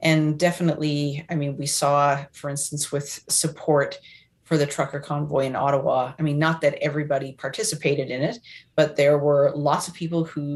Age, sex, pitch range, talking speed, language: 30-49, female, 140-160 Hz, 175 wpm, English